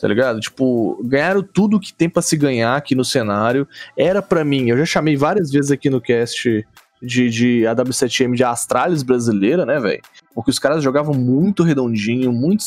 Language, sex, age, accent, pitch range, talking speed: Portuguese, male, 20-39, Brazilian, 130-195 Hz, 190 wpm